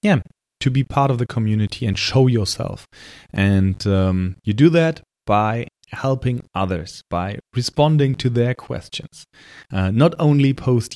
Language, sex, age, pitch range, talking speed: English, male, 30-49, 100-145 Hz, 150 wpm